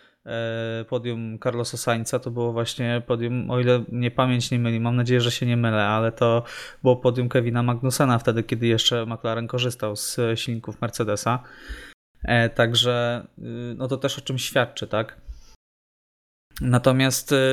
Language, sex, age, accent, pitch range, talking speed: Polish, male, 20-39, native, 115-130 Hz, 145 wpm